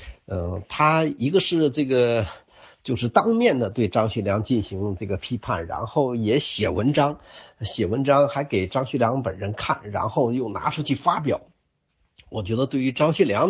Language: Chinese